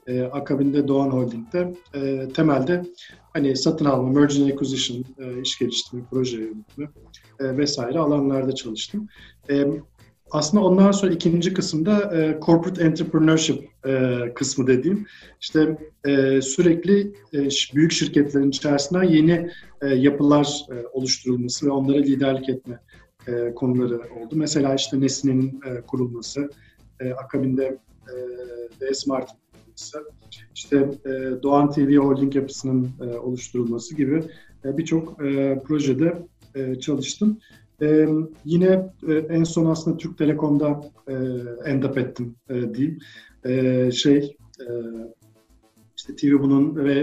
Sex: male